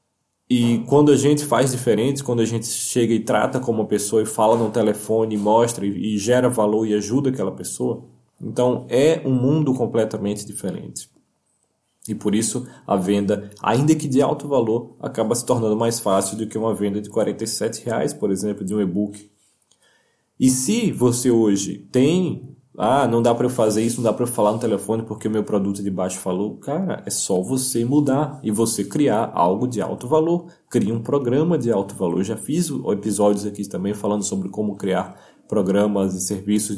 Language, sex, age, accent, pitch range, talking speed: Portuguese, male, 20-39, Brazilian, 105-130 Hz, 195 wpm